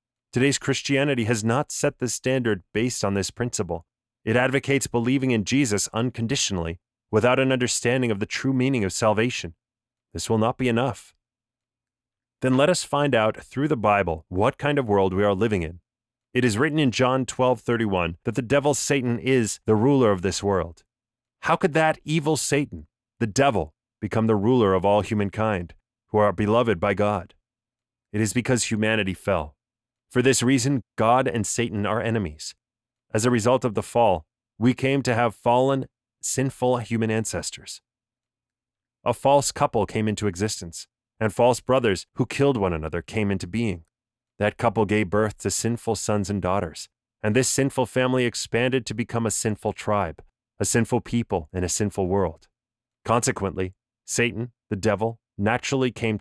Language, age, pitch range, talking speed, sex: English, 30-49, 105-125 Hz, 165 wpm, male